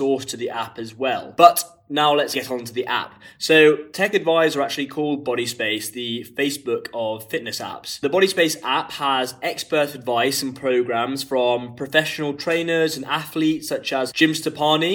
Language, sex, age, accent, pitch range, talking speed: English, male, 20-39, British, 125-150 Hz, 165 wpm